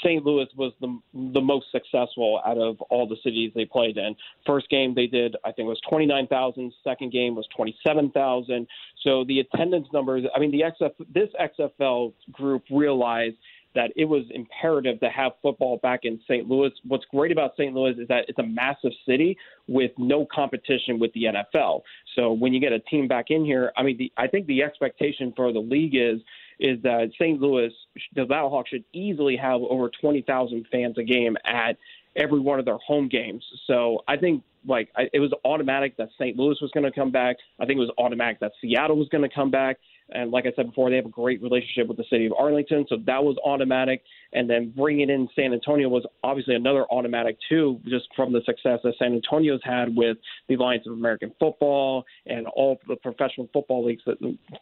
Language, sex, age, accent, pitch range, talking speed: English, male, 30-49, American, 120-140 Hz, 205 wpm